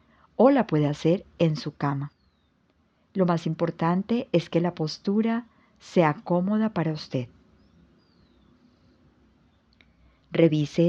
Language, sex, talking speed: Spanish, female, 105 wpm